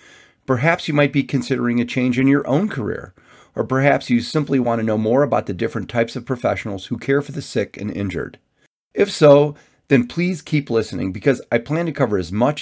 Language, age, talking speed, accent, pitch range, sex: English, 30-49, 215 wpm, American, 105-140 Hz, male